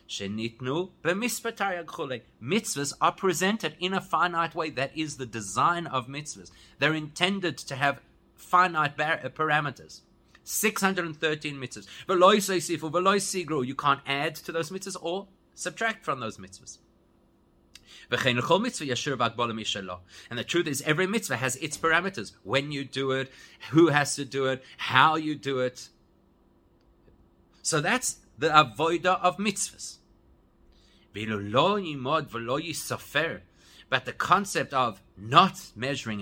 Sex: male